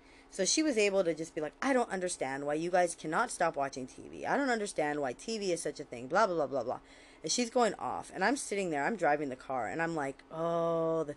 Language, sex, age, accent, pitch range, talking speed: English, female, 20-39, American, 140-180 Hz, 265 wpm